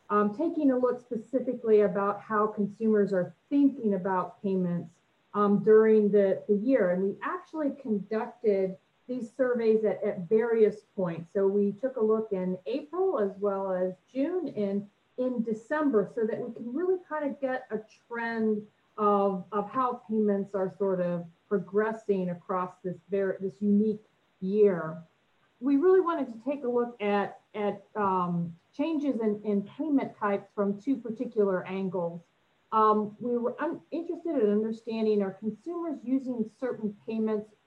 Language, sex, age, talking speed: English, female, 40-59, 150 wpm